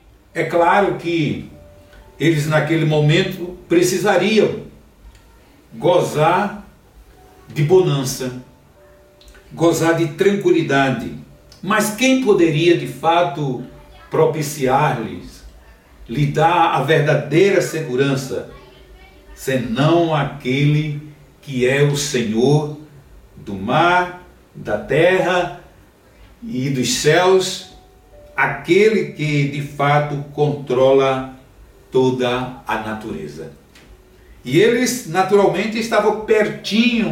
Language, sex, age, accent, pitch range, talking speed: Portuguese, male, 60-79, Brazilian, 125-180 Hz, 80 wpm